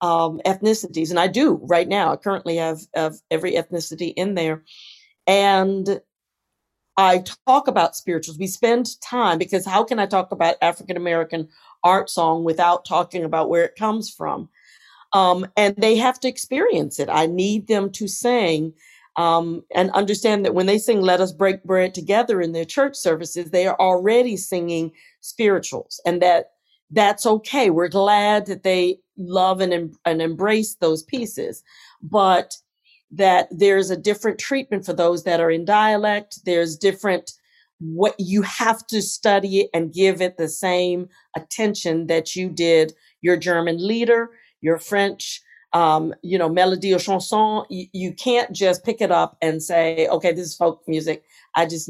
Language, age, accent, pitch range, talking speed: English, 50-69, American, 170-210 Hz, 165 wpm